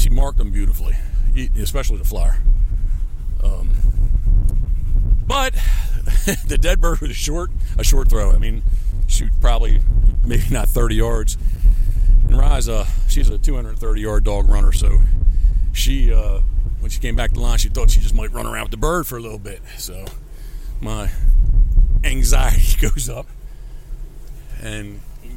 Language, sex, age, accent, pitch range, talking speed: English, male, 50-69, American, 90-110 Hz, 145 wpm